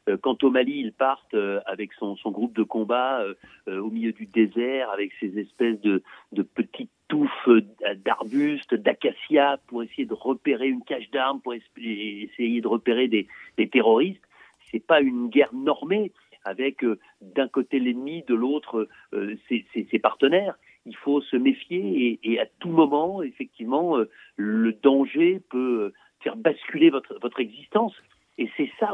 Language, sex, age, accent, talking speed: French, male, 50-69, French, 170 wpm